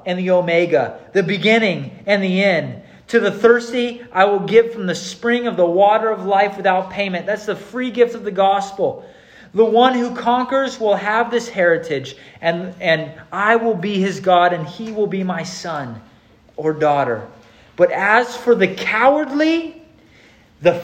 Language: English